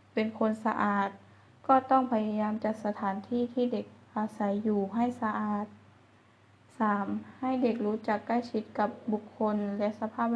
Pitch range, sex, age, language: 195-230 Hz, female, 20-39, Thai